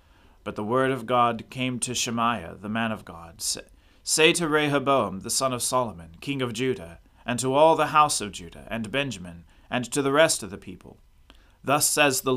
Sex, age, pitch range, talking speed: male, 40-59, 95-130 Hz, 200 wpm